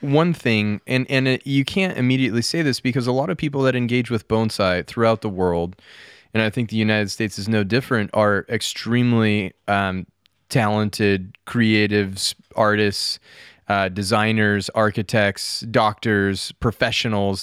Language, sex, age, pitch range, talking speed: English, male, 20-39, 100-120 Hz, 145 wpm